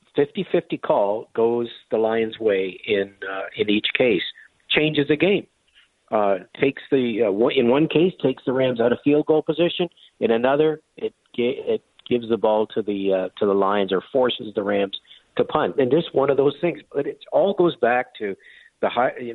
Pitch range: 100-140 Hz